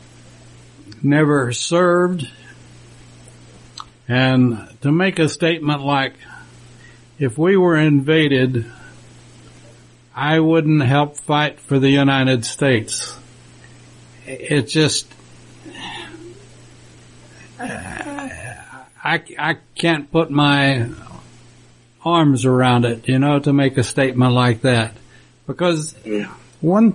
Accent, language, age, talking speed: American, English, 60-79, 90 wpm